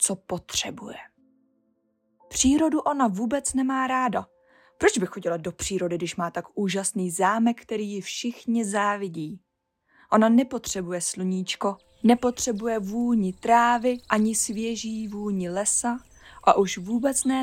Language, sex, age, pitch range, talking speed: Czech, female, 20-39, 195-245 Hz, 120 wpm